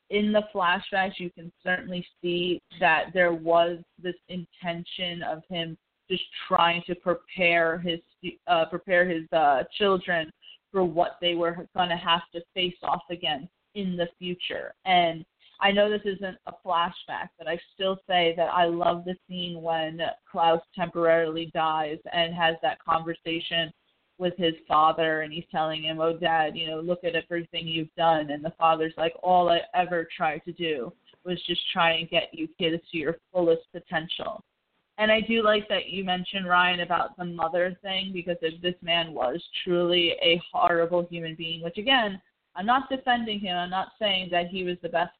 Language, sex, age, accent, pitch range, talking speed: English, female, 30-49, American, 165-185 Hz, 180 wpm